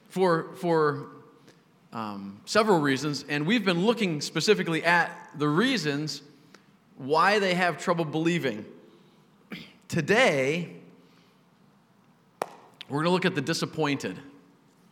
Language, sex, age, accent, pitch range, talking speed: English, male, 40-59, American, 160-215 Hz, 105 wpm